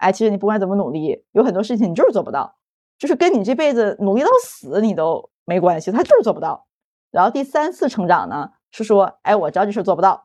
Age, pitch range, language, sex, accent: 20-39, 190-250 Hz, Chinese, female, native